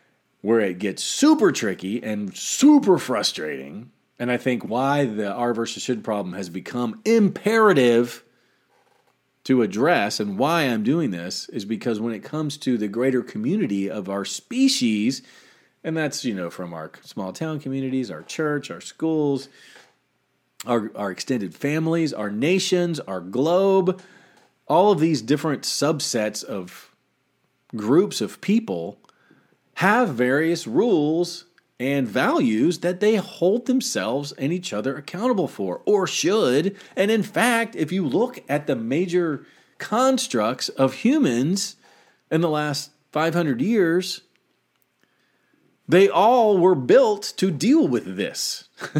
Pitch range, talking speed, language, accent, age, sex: 125-205 Hz, 135 wpm, English, American, 40-59, male